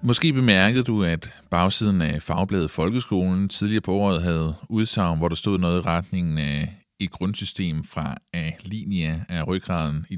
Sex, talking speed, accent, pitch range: male, 160 wpm, native, 85-125 Hz